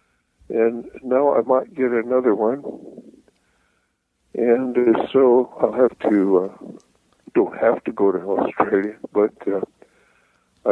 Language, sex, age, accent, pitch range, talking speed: English, male, 60-79, American, 115-165 Hz, 125 wpm